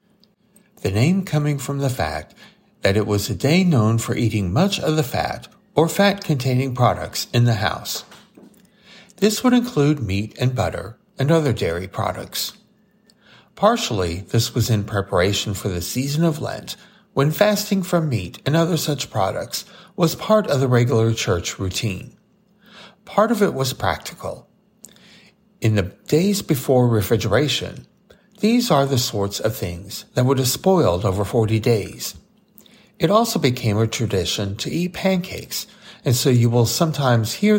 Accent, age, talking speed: American, 60-79, 155 wpm